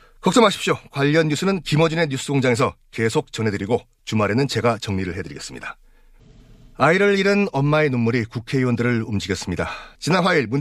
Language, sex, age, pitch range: Korean, male, 30-49, 115-150 Hz